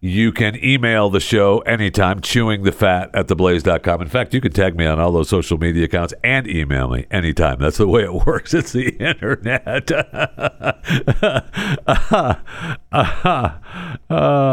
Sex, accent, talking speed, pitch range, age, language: male, American, 150 wpm, 80-105 Hz, 60-79, English